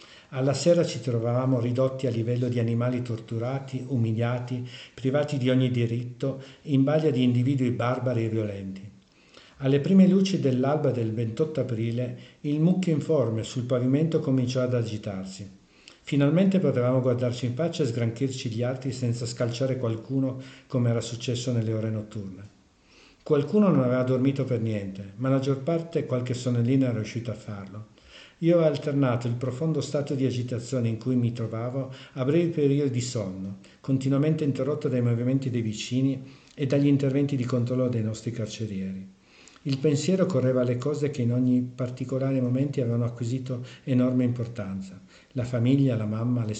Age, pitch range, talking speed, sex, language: 50-69, 120-140 Hz, 155 wpm, male, Italian